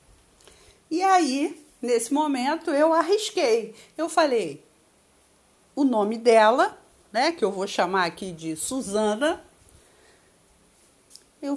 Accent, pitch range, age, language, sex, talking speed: Brazilian, 230-335 Hz, 50-69, Portuguese, female, 105 wpm